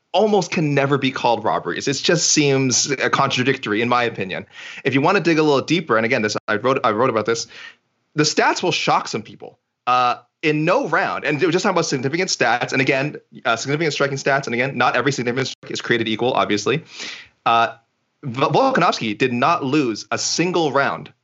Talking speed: 200 wpm